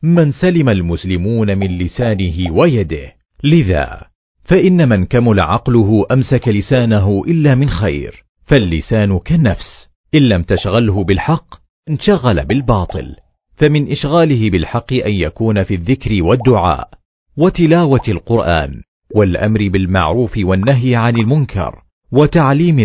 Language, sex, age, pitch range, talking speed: Arabic, male, 40-59, 95-135 Hz, 105 wpm